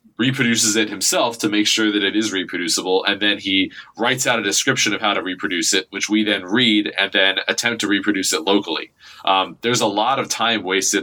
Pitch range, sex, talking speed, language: 95-110 Hz, male, 220 wpm, English